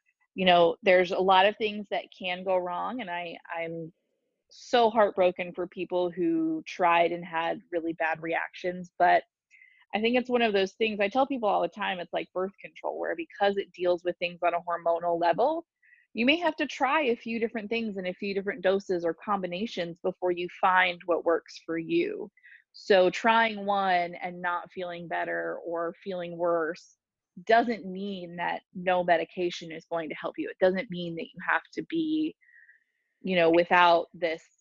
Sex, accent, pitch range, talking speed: female, American, 175-220 Hz, 185 wpm